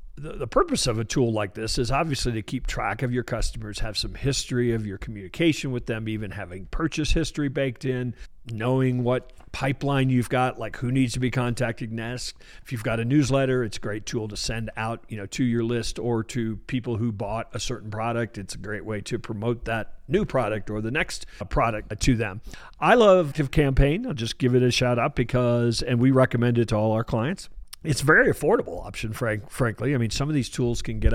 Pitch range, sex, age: 110-130 Hz, male, 50-69